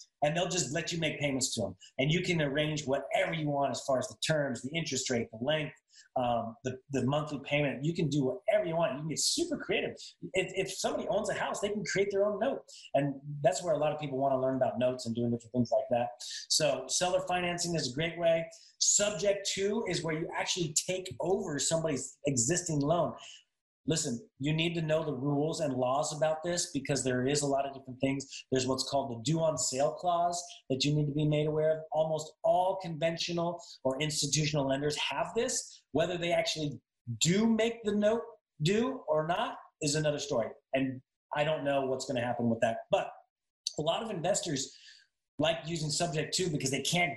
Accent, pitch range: American, 135-175 Hz